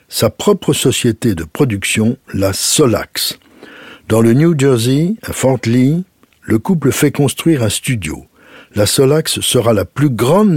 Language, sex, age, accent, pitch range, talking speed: French, male, 60-79, French, 110-140 Hz, 150 wpm